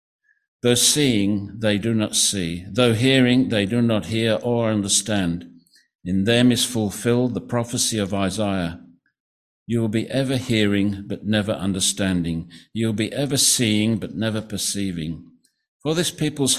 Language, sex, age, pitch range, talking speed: English, male, 60-79, 95-120 Hz, 150 wpm